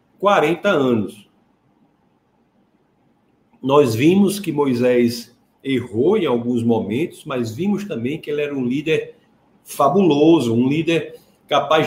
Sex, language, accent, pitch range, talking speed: male, Portuguese, Brazilian, 135-190 Hz, 110 wpm